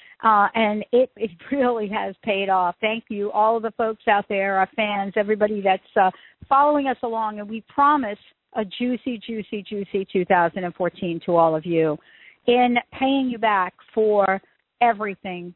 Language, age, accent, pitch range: English, 50-69, American, 190-225 Hz